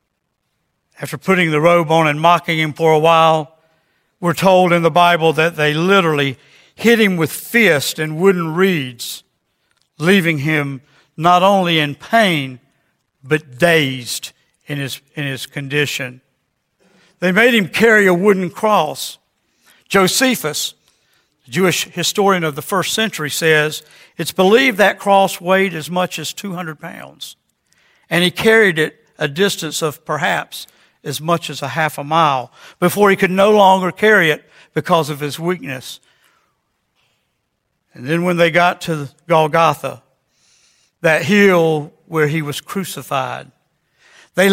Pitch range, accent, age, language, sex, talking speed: 150-185 Hz, American, 60-79, English, male, 140 wpm